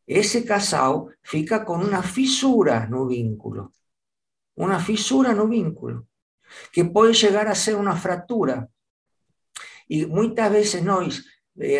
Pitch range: 165-220 Hz